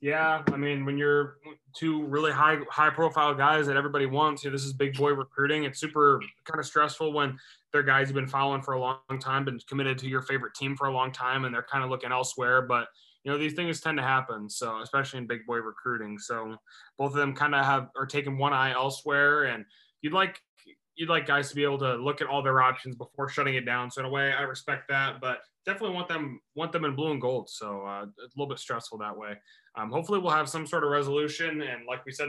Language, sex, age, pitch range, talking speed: English, male, 20-39, 130-150 Hz, 255 wpm